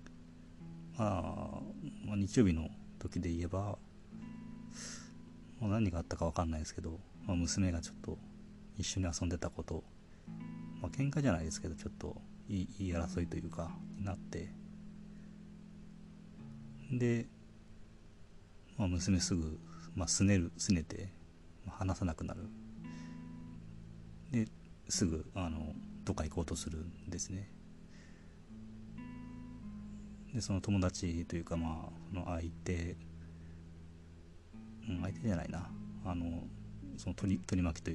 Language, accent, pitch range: Japanese, native, 85-105 Hz